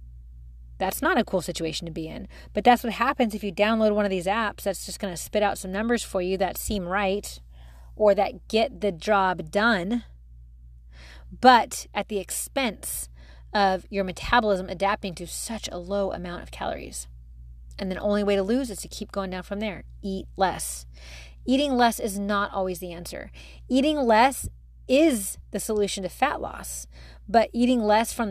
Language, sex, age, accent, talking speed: English, female, 30-49, American, 185 wpm